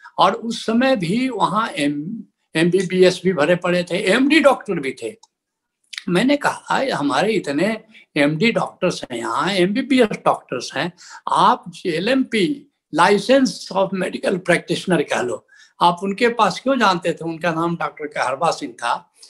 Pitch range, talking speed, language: 165-230 Hz, 150 wpm, Hindi